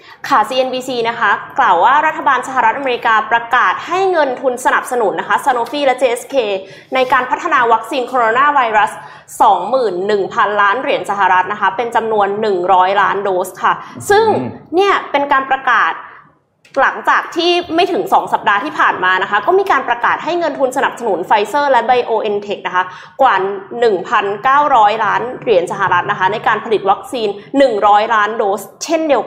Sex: female